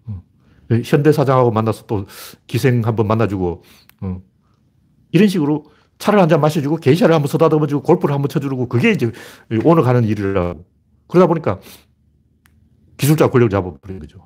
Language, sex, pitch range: Korean, male, 105-155 Hz